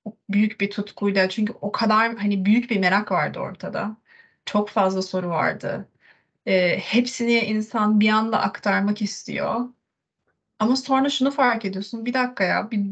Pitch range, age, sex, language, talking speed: 200-235 Hz, 30-49, female, Turkish, 150 wpm